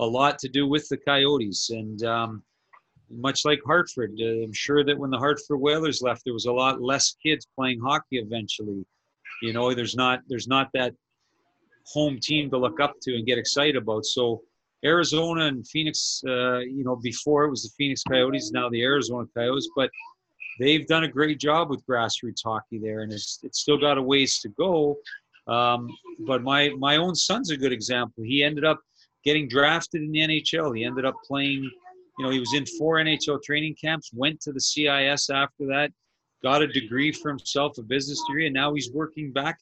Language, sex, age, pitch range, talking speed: English, male, 40-59, 120-145 Hz, 200 wpm